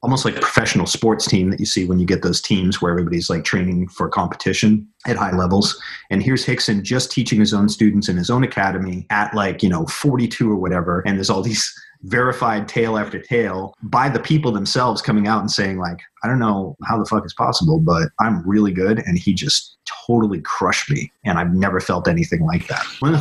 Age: 30-49